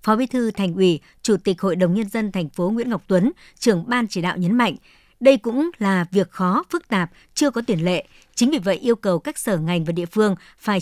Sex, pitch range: male, 185-240 Hz